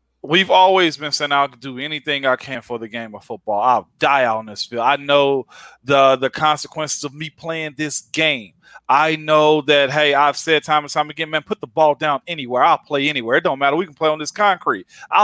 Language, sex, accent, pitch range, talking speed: English, male, American, 145-180 Hz, 230 wpm